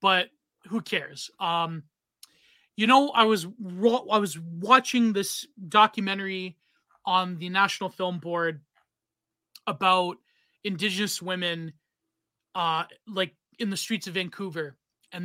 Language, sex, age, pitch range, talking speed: English, male, 30-49, 165-205 Hz, 115 wpm